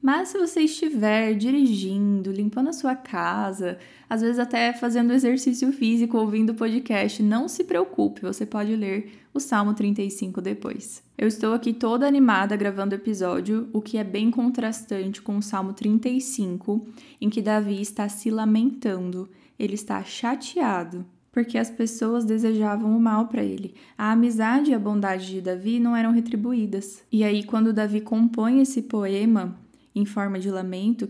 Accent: Brazilian